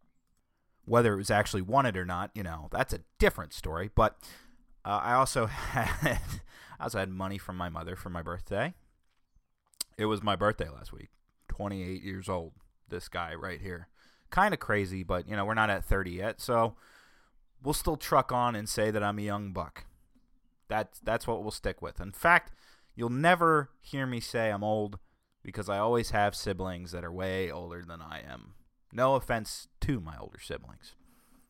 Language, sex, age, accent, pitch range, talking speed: English, male, 20-39, American, 85-115 Hz, 185 wpm